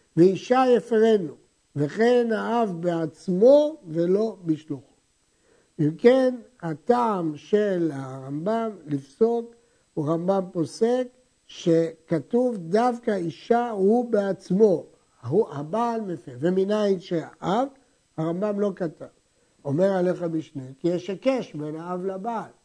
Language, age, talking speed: Hebrew, 60-79, 100 wpm